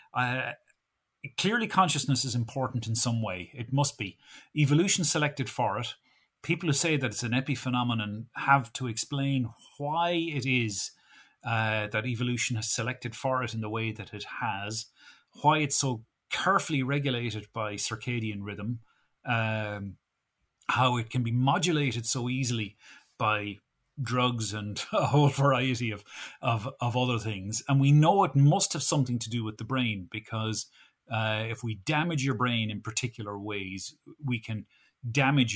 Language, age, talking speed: English, 30-49, 155 wpm